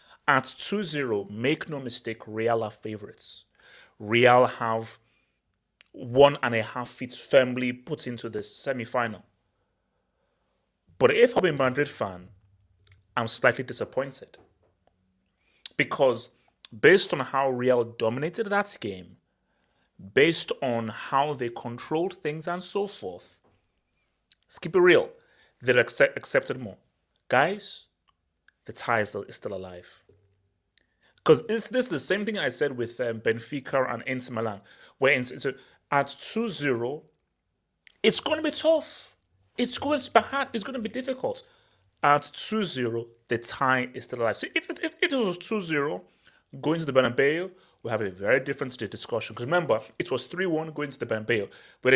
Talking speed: 150 wpm